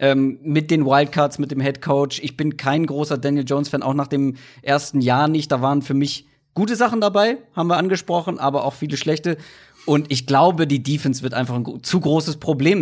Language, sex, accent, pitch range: German, male, German, 130-160 Hz